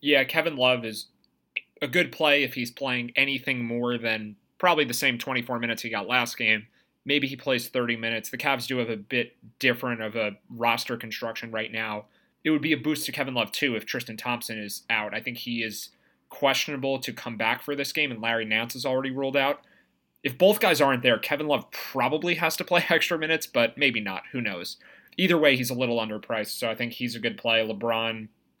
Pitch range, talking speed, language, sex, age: 115-140 Hz, 220 wpm, English, male, 30-49